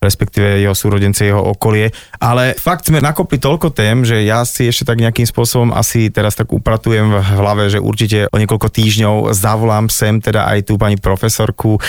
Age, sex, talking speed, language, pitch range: 30-49, male, 180 wpm, Slovak, 100-120 Hz